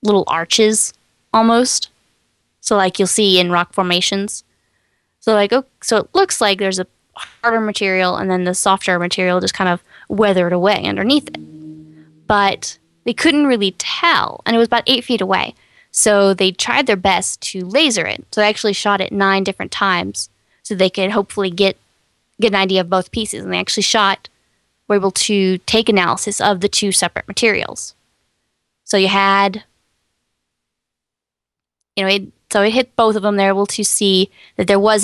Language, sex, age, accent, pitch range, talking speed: English, female, 10-29, American, 185-210 Hz, 175 wpm